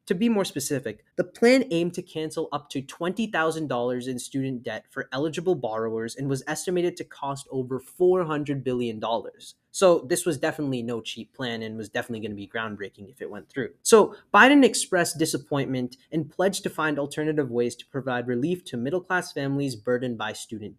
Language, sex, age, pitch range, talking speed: English, male, 20-39, 130-180 Hz, 180 wpm